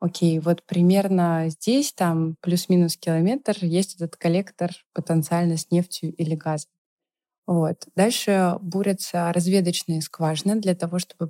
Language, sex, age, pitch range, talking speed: Russian, female, 20-39, 170-195 Hz, 130 wpm